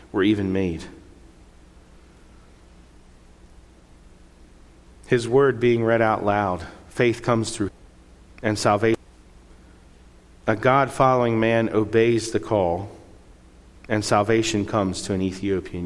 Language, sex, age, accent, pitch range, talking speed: English, male, 40-59, American, 80-120 Hz, 100 wpm